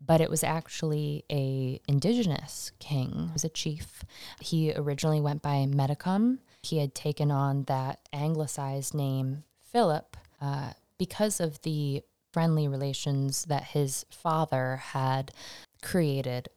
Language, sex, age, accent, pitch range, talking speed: English, female, 20-39, American, 135-160 Hz, 125 wpm